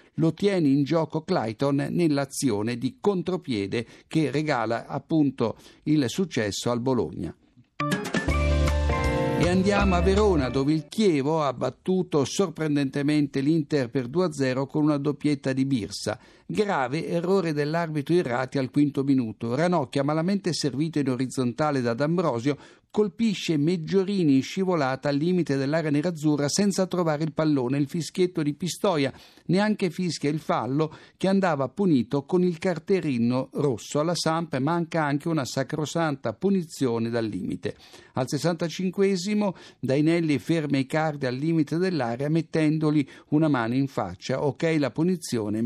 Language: Italian